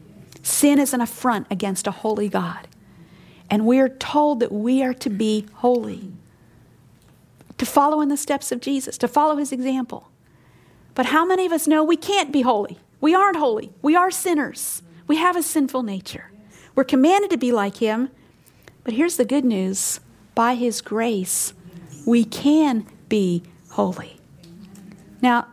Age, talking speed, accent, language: 50-69, 160 wpm, American, English